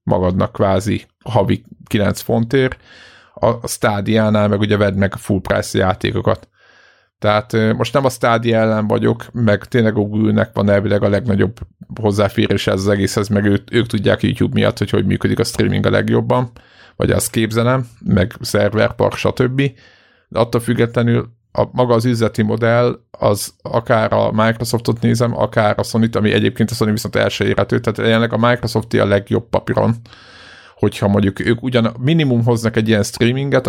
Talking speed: 160 wpm